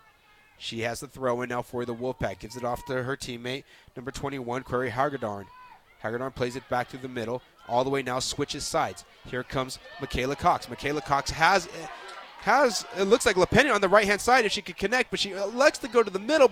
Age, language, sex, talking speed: 30-49, English, male, 215 wpm